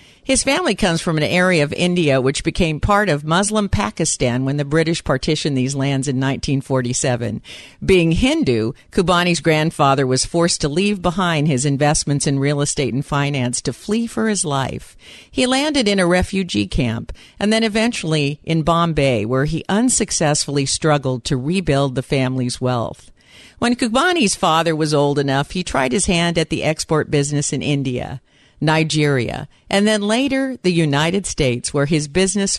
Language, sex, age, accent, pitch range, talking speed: English, female, 50-69, American, 140-185 Hz, 165 wpm